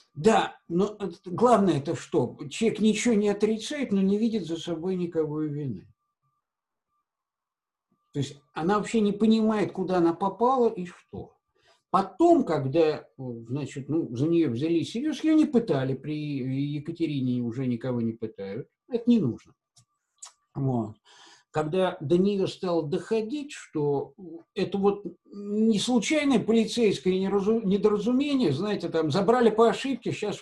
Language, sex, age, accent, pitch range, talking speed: Russian, male, 50-69, native, 155-225 Hz, 130 wpm